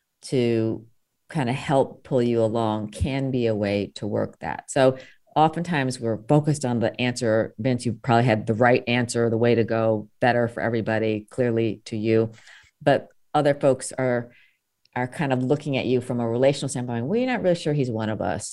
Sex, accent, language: female, American, English